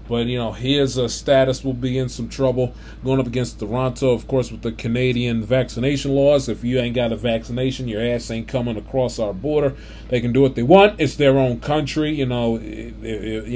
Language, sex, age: English, male, 20-39